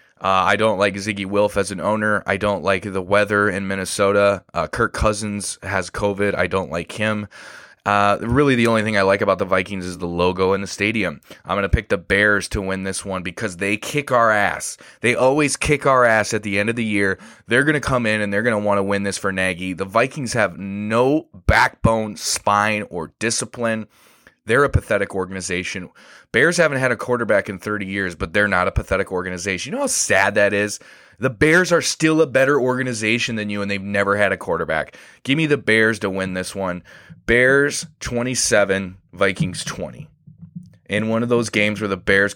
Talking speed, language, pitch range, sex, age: 210 wpm, English, 95-115 Hz, male, 20-39